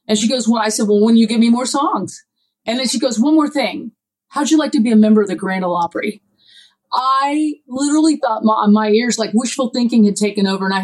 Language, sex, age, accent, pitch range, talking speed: English, female, 30-49, American, 210-270 Hz, 255 wpm